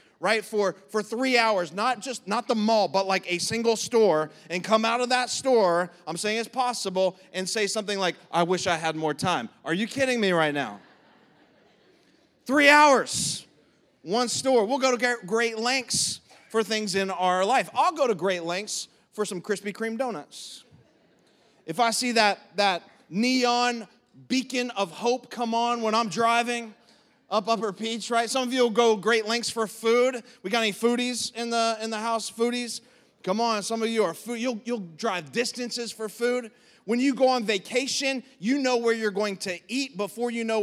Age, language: 30-49, English